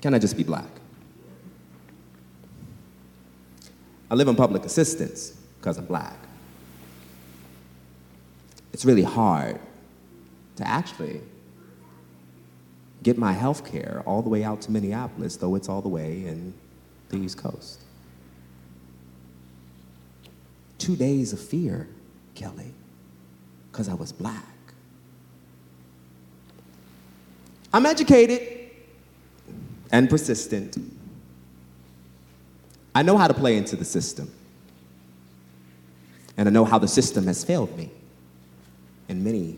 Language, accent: English, American